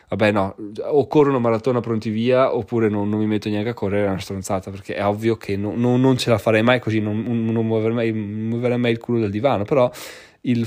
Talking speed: 235 wpm